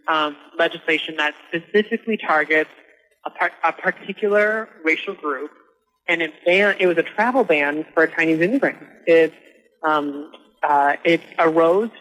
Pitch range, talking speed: 155-195 Hz, 115 wpm